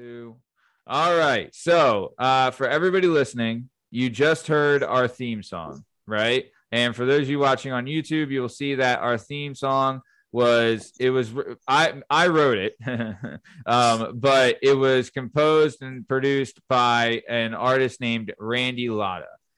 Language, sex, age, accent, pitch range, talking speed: English, male, 20-39, American, 110-130 Hz, 150 wpm